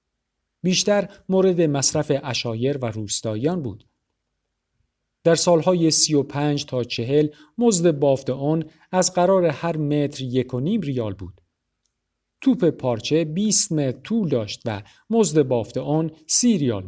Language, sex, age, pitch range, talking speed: Persian, male, 50-69, 115-165 Hz, 130 wpm